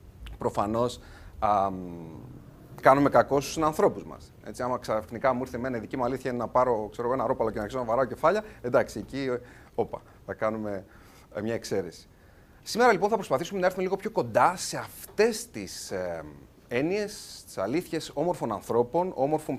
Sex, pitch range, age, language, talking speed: male, 105-145 Hz, 30-49, Greek, 160 wpm